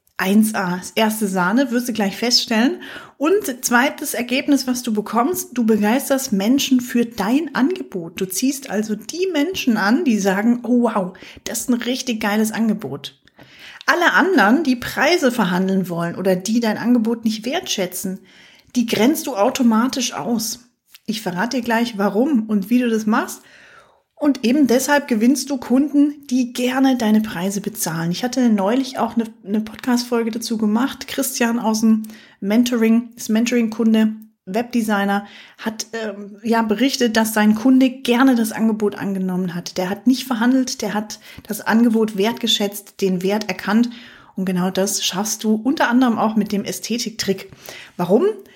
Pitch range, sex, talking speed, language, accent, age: 205-255 Hz, female, 155 wpm, German, German, 30-49